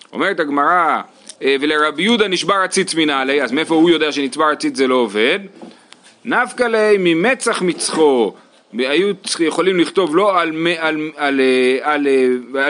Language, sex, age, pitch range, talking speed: Hebrew, male, 30-49, 140-210 Hz, 140 wpm